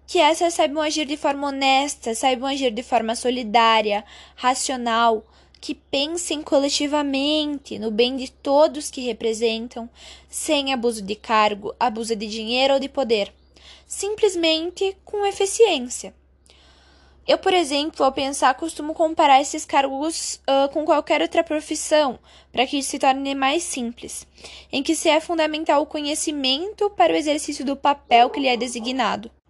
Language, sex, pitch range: Portuguese, female, 255-320 Hz